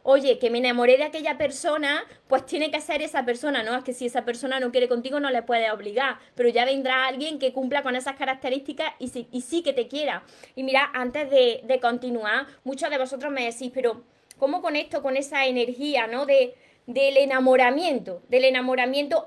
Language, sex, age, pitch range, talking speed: Spanish, female, 20-39, 245-290 Hz, 205 wpm